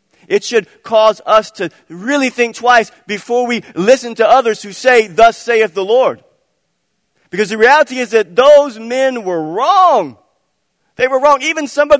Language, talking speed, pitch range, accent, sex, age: English, 170 wpm, 195-270 Hz, American, male, 40-59